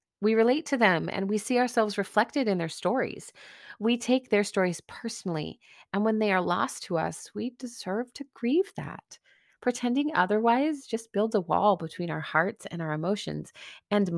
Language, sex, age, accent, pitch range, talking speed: English, female, 30-49, American, 160-215 Hz, 180 wpm